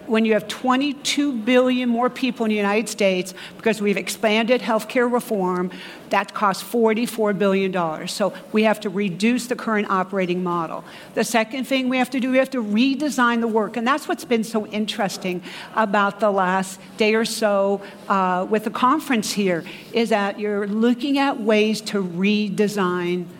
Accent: American